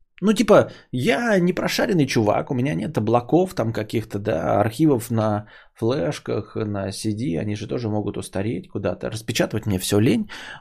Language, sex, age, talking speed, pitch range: English, male, 20-39, 160 wpm, 105-155 Hz